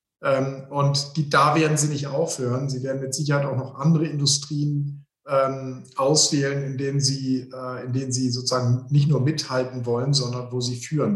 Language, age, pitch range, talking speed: German, 50-69, 135-155 Hz, 175 wpm